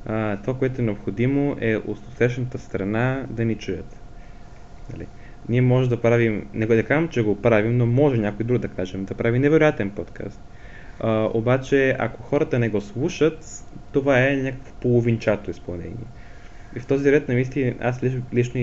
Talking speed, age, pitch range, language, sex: 160 wpm, 20-39, 105-130 Hz, Bulgarian, male